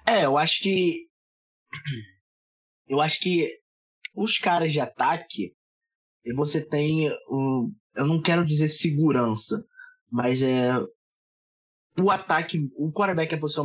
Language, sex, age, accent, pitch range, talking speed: Portuguese, male, 20-39, Brazilian, 125-170 Hz, 130 wpm